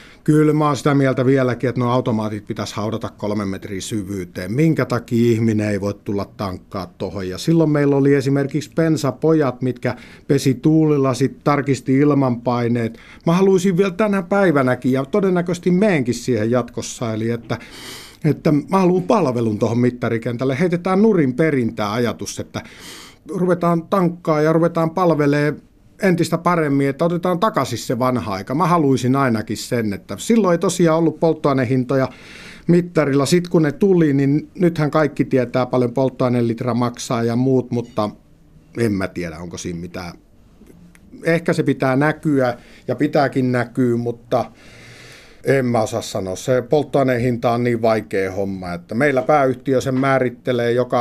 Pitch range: 115-155 Hz